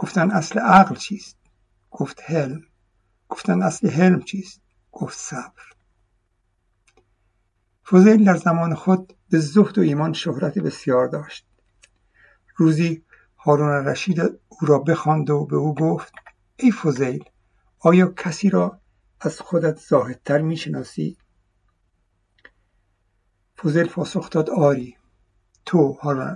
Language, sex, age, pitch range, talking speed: Persian, male, 60-79, 115-180 Hz, 110 wpm